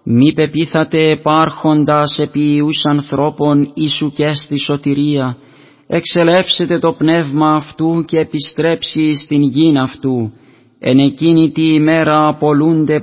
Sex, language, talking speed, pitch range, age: male, Greek, 110 wpm, 145-160 Hz, 30-49